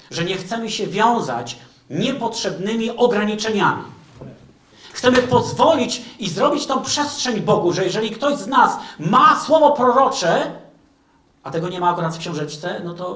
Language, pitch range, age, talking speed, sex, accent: Polish, 145-230 Hz, 40-59, 140 wpm, male, native